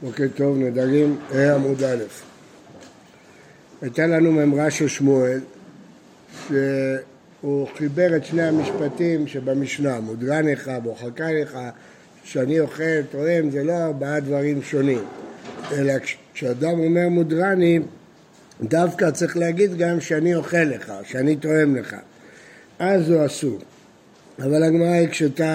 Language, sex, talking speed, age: Hebrew, male, 110 wpm, 60-79